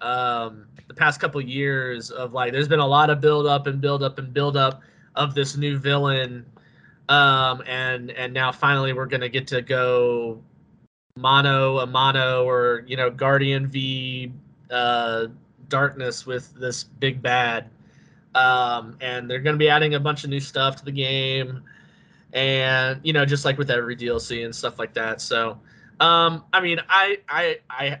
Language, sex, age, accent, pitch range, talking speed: English, male, 20-39, American, 125-150 Hz, 170 wpm